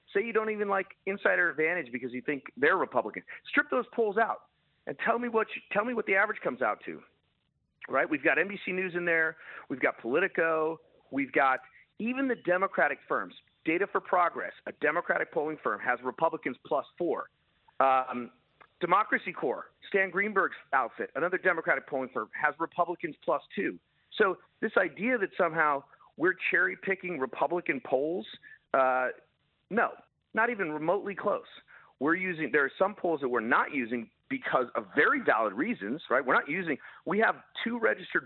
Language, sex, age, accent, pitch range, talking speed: English, male, 40-59, American, 135-195 Hz, 175 wpm